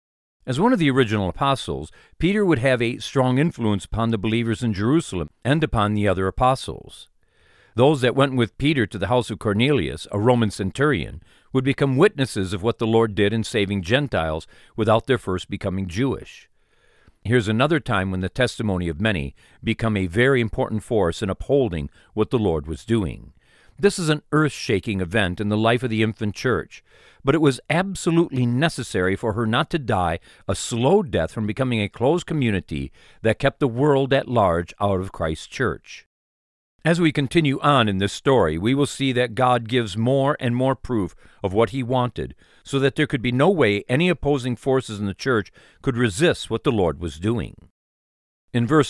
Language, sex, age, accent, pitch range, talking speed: English, male, 50-69, American, 100-135 Hz, 190 wpm